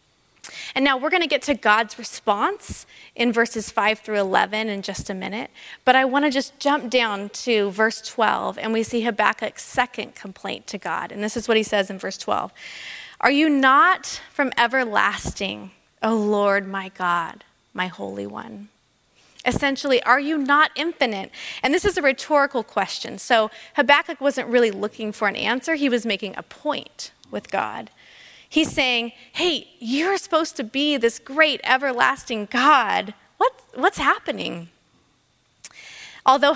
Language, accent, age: English, American, 20-39